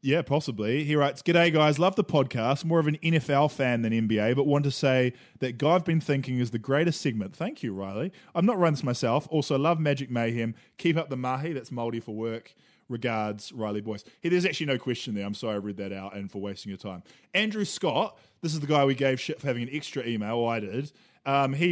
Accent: Australian